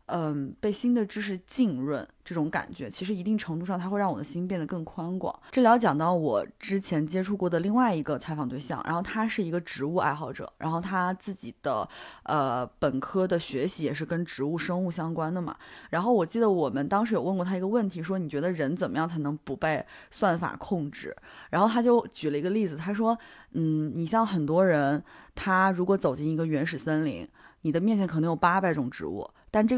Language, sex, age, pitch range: Chinese, female, 20-39, 155-205 Hz